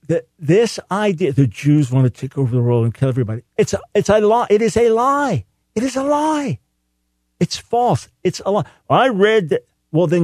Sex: male